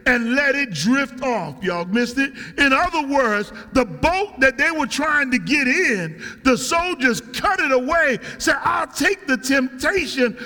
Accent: American